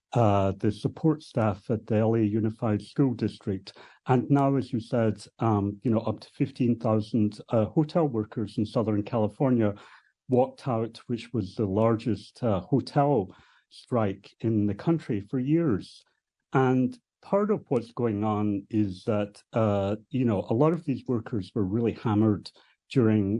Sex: male